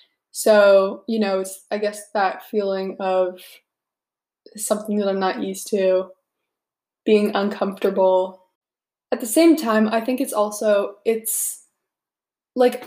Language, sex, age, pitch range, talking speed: English, female, 20-39, 200-250 Hz, 120 wpm